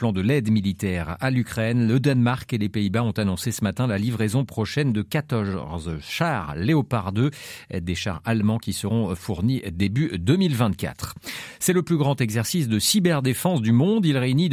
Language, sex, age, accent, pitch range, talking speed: French, male, 40-59, French, 105-140 Hz, 175 wpm